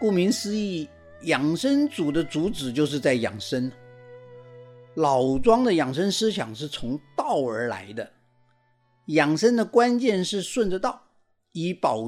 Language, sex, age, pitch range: Chinese, male, 50-69, 150-230 Hz